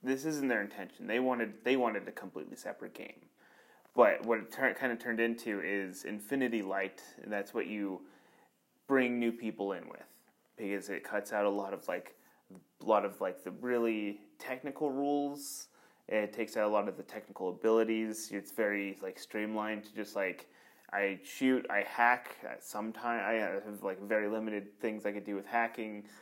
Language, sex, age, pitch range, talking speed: English, male, 30-49, 100-120 Hz, 185 wpm